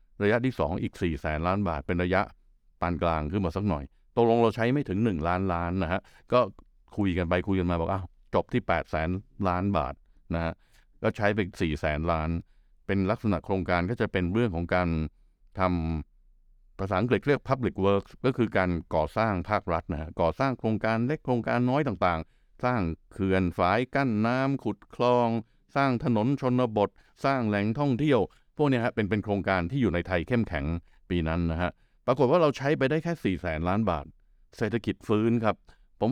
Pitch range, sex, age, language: 90-120 Hz, male, 60-79, Thai